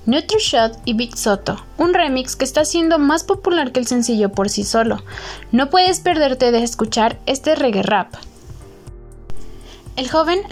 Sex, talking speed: female, 155 wpm